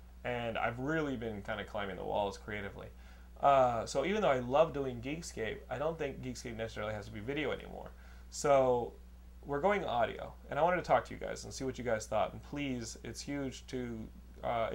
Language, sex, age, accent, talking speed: English, male, 30-49, American, 210 wpm